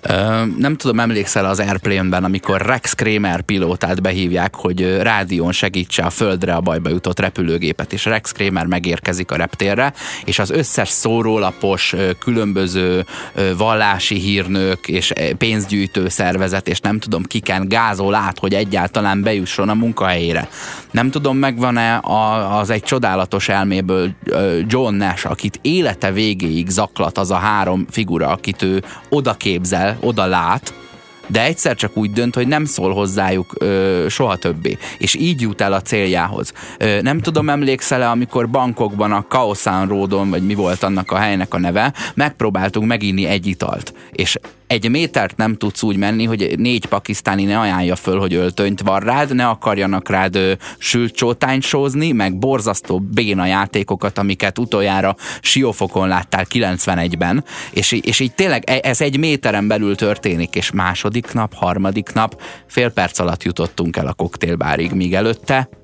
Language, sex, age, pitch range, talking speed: Hungarian, male, 20-39, 95-115 Hz, 145 wpm